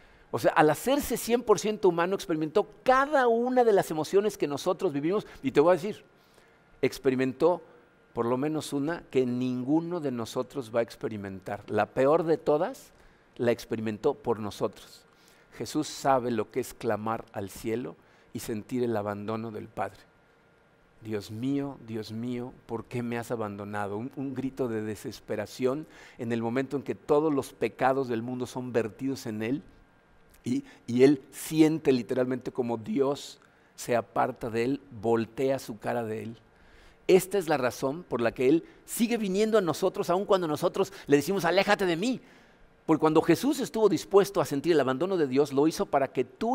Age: 50-69